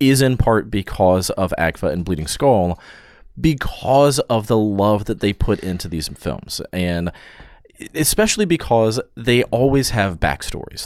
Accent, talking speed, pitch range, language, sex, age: American, 145 wpm, 85-115 Hz, English, male, 30-49